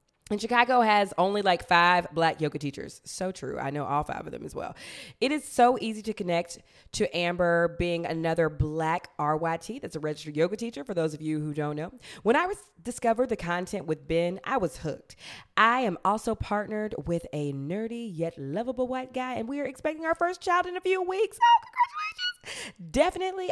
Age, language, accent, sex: 20-39, English, American, female